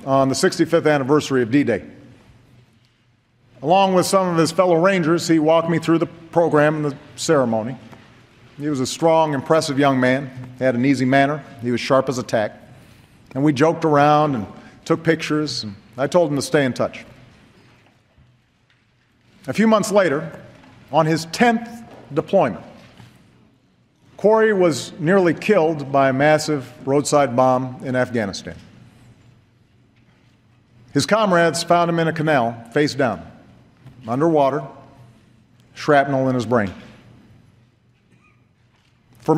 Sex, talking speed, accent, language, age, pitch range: male, 135 wpm, American, English, 50-69, 120-155 Hz